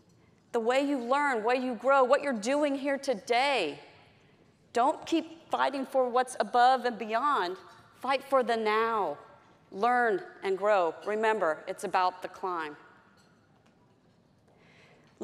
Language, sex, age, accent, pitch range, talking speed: English, female, 40-59, American, 225-285 Hz, 130 wpm